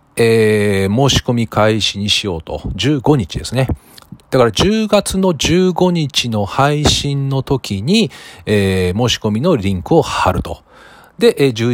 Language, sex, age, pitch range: Japanese, male, 40-59, 95-145 Hz